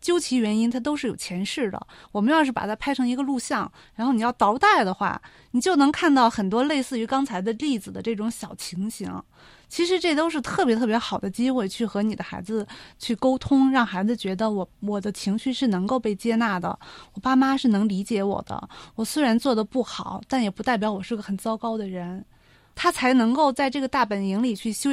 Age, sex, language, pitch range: 30-49, female, Chinese, 205-255 Hz